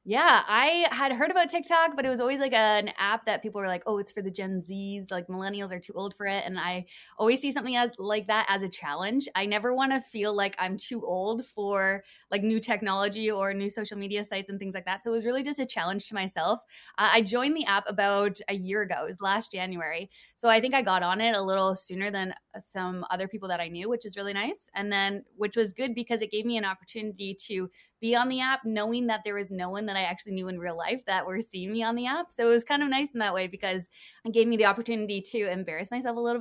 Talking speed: 265 wpm